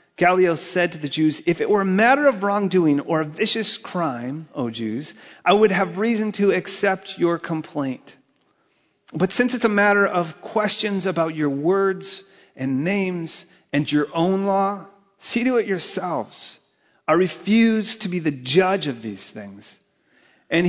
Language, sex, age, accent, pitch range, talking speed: English, male, 40-59, American, 150-195 Hz, 160 wpm